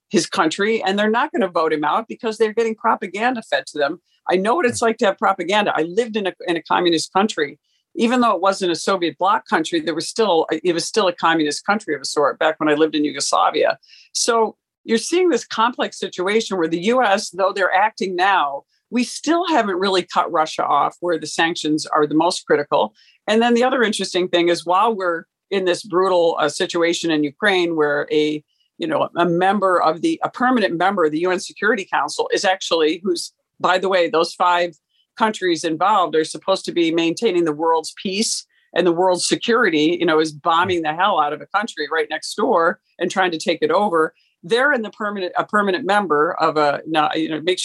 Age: 50-69